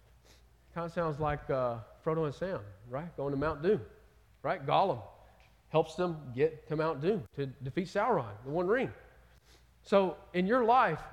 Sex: male